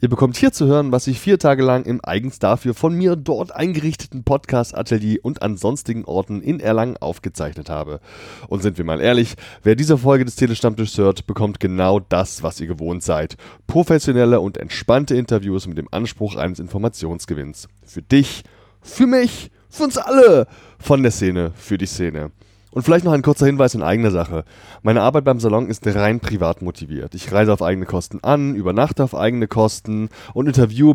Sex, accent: male, German